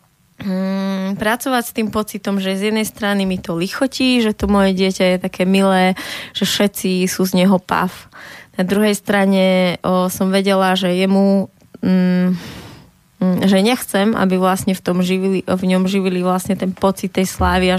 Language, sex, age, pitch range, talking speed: Slovak, female, 20-39, 185-205 Hz, 170 wpm